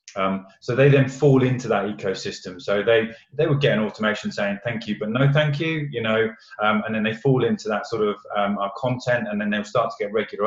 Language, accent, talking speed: English, British, 245 wpm